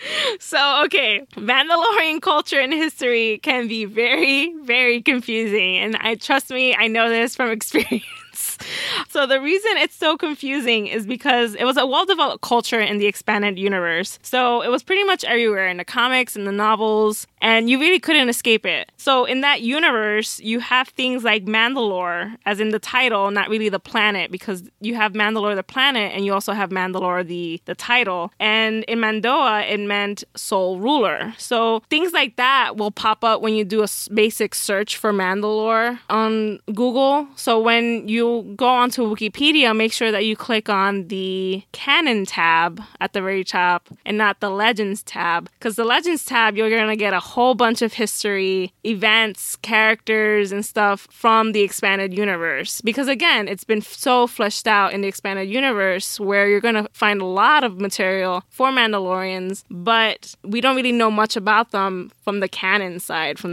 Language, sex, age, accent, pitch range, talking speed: English, female, 20-39, American, 200-245 Hz, 180 wpm